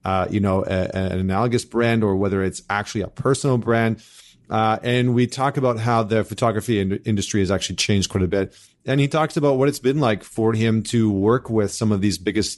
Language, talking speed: English, 225 wpm